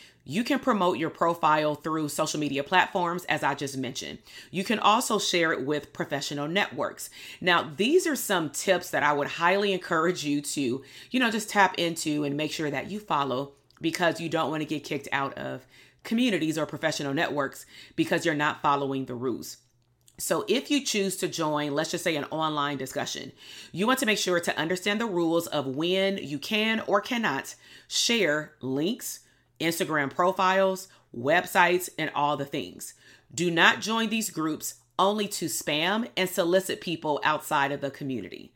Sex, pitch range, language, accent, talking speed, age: female, 145-190 Hz, English, American, 175 wpm, 30-49